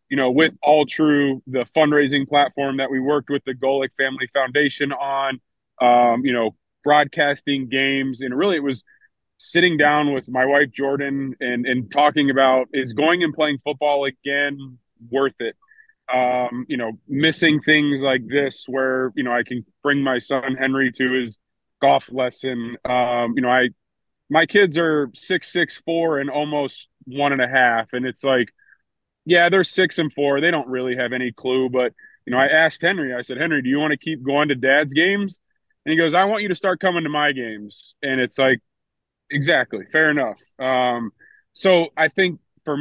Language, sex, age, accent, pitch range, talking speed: English, male, 20-39, American, 125-150 Hz, 190 wpm